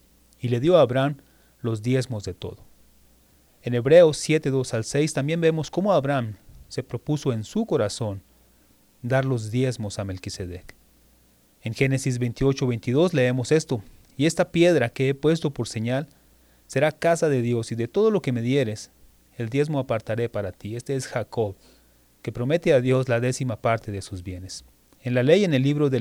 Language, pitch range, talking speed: English, 105-140 Hz, 180 wpm